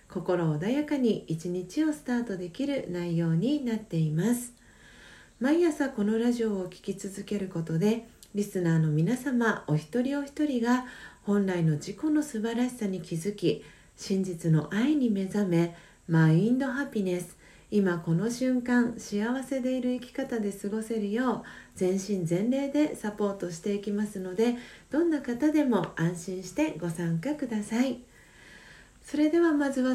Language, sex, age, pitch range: Japanese, female, 40-59, 190-250 Hz